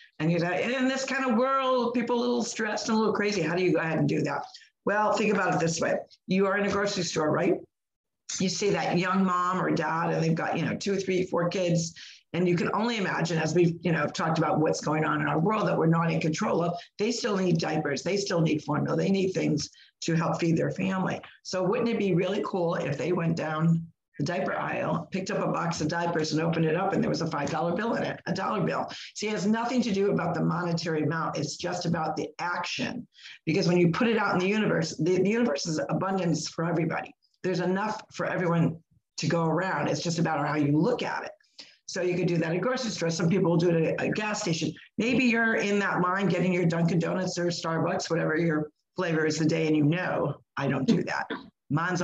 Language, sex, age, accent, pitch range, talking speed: English, female, 50-69, American, 165-200 Hz, 250 wpm